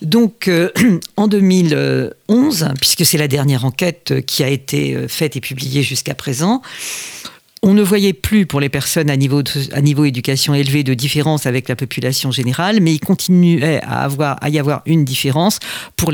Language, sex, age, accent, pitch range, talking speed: French, female, 50-69, French, 135-175 Hz, 180 wpm